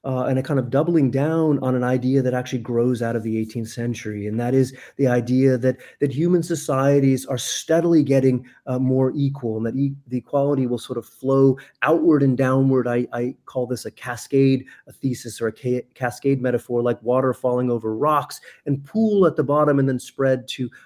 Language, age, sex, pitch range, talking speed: English, 30-49, male, 120-145 Hz, 205 wpm